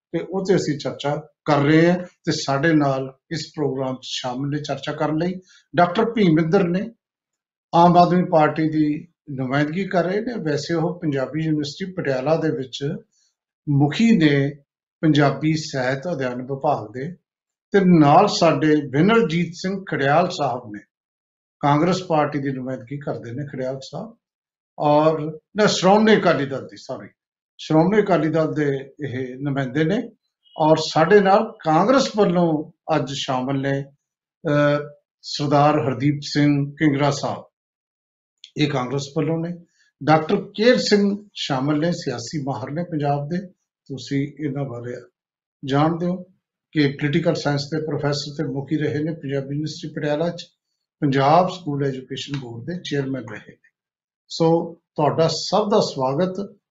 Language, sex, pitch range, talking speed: Punjabi, male, 140-175 Hz, 115 wpm